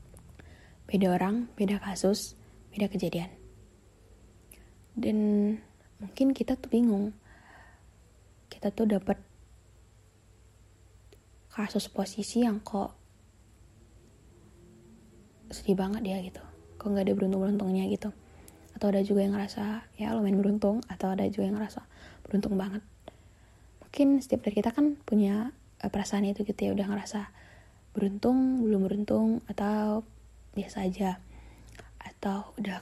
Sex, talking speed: female, 115 wpm